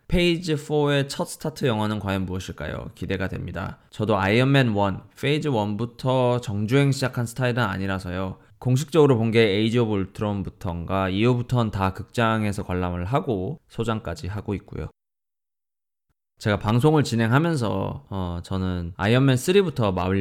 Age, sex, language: 20-39, male, Korean